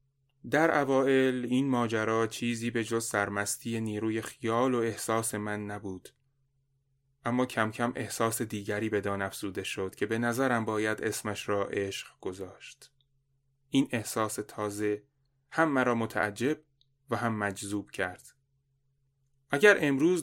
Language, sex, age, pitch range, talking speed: Persian, male, 30-49, 110-135 Hz, 125 wpm